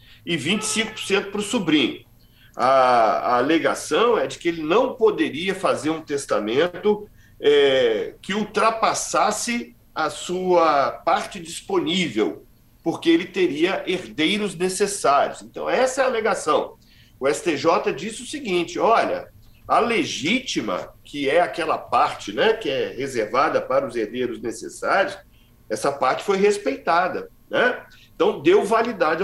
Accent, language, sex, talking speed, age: Brazilian, Portuguese, male, 125 wpm, 50-69